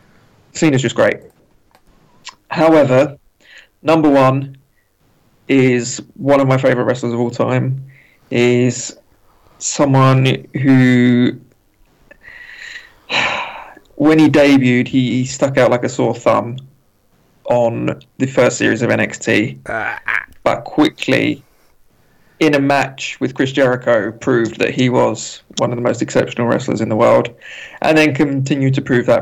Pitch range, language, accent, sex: 120-140 Hz, English, British, male